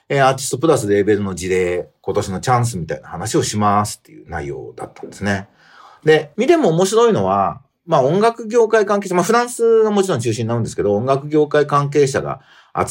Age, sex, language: 40-59, male, Japanese